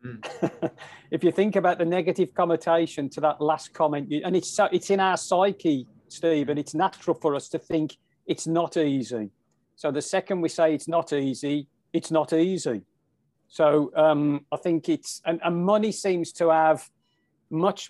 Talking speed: 175 wpm